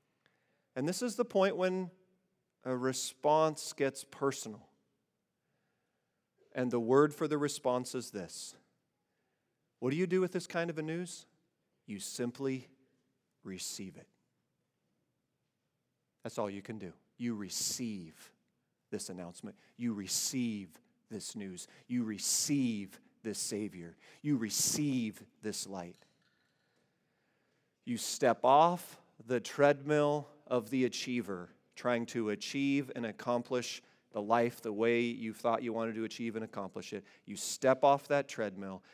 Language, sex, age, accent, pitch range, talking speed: English, male, 40-59, American, 105-135 Hz, 130 wpm